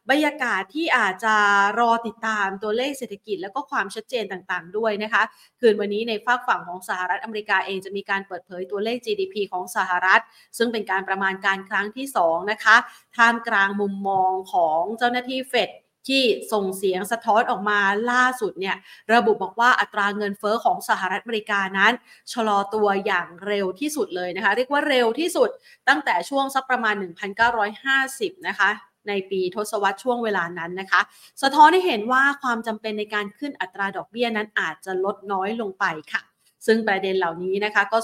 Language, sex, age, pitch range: Thai, female, 30-49, 195-240 Hz